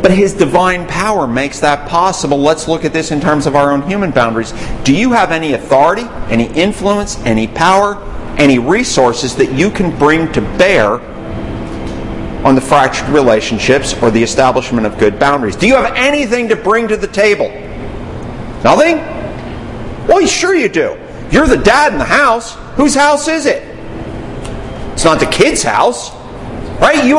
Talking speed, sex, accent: 170 wpm, male, American